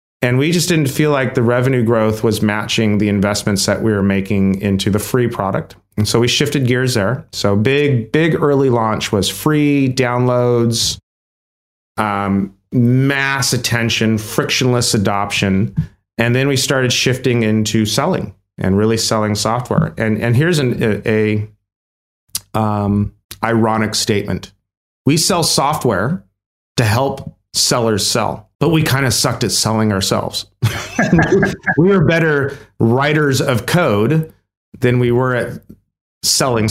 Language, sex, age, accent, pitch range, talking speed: English, male, 30-49, American, 105-130 Hz, 140 wpm